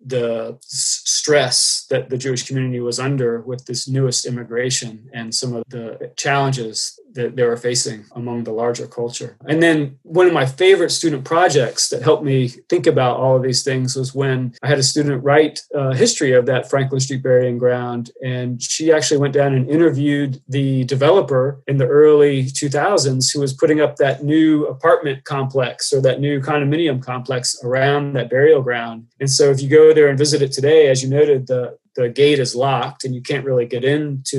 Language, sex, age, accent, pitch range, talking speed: English, male, 30-49, American, 125-150 Hz, 190 wpm